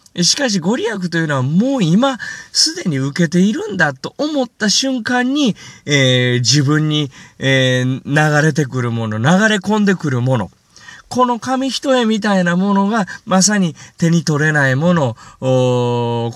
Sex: male